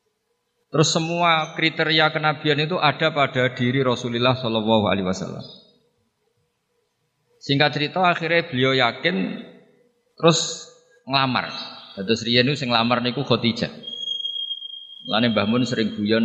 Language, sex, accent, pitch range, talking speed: Indonesian, male, native, 110-160 Hz, 105 wpm